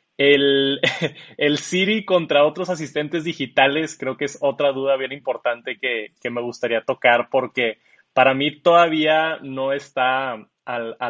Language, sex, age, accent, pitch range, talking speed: Spanish, male, 20-39, Mexican, 130-160 Hz, 145 wpm